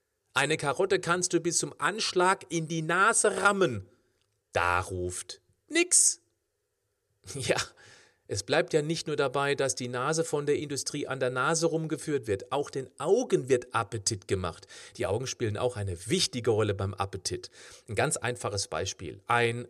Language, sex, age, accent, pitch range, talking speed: German, male, 40-59, German, 110-170 Hz, 160 wpm